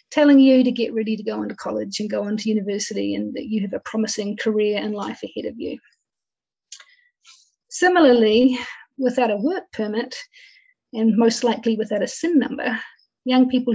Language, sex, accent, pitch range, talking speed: English, female, Australian, 215-265 Hz, 175 wpm